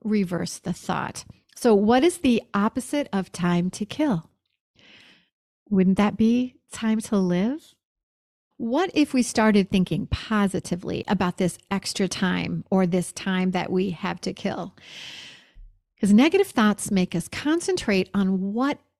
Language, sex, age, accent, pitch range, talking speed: English, female, 40-59, American, 185-245 Hz, 140 wpm